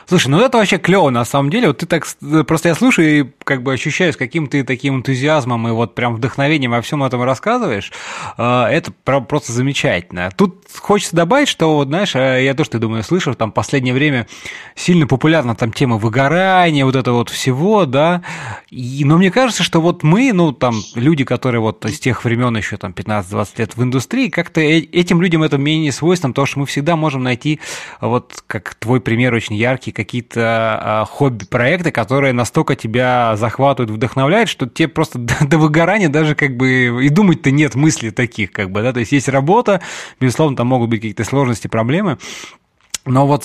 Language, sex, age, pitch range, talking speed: Russian, male, 20-39, 120-155 Hz, 185 wpm